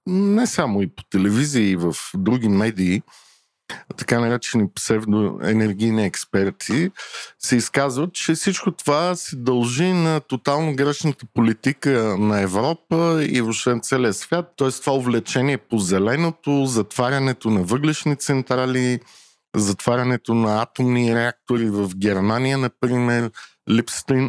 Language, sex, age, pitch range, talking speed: Bulgarian, male, 50-69, 110-140 Hz, 120 wpm